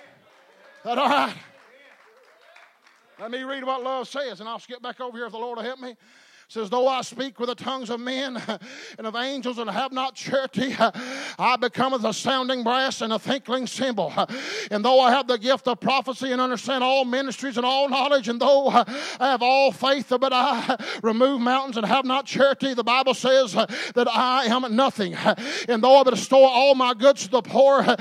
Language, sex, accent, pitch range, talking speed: English, male, American, 245-275 Hz, 200 wpm